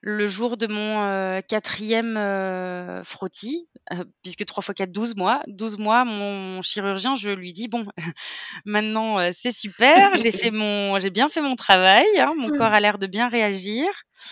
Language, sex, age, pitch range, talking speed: French, female, 20-39, 185-230 Hz, 180 wpm